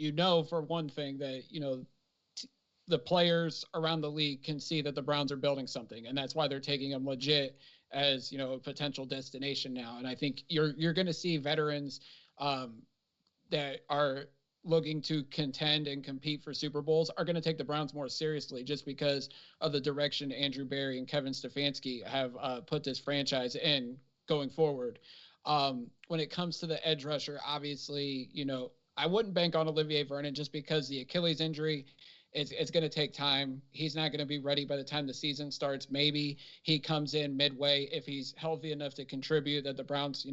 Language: English